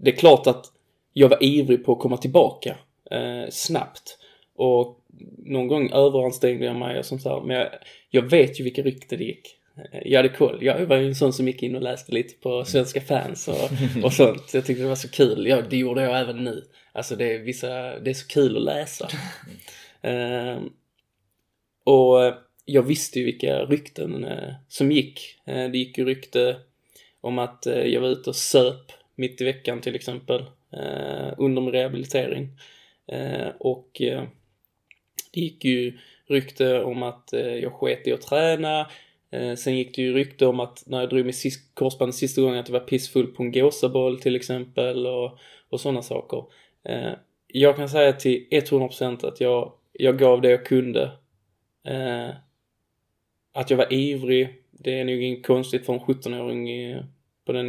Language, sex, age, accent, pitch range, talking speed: Swedish, male, 20-39, native, 125-135 Hz, 180 wpm